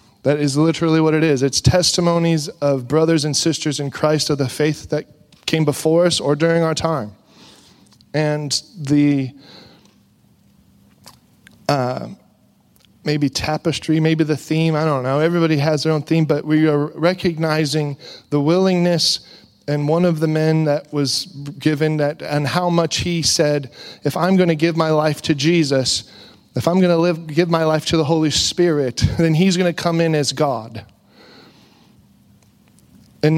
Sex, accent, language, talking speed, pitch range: male, American, English, 160 wpm, 145-170 Hz